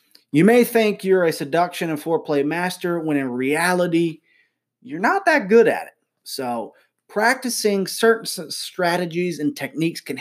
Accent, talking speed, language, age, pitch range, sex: American, 145 wpm, English, 20-39, 145-190 Hz, male